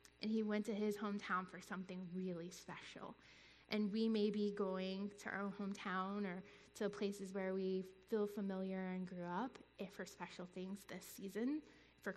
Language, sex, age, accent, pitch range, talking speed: English, female, 20-39, American, 190-225 Hz, 170 wpm